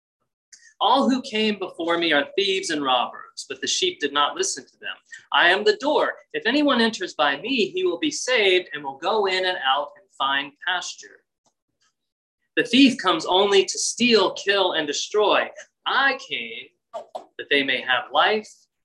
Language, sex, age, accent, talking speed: English, male, 30-49, American, 175 wpm